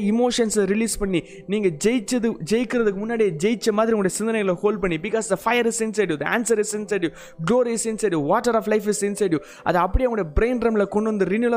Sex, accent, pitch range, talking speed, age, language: male, native, 190-230 Hz, 225 wpm, 20-39, Tamil